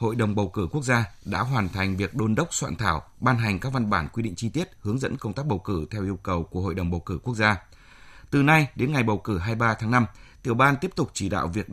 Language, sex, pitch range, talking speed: Vietnamese, male, 100-125 Hz, 280 wpm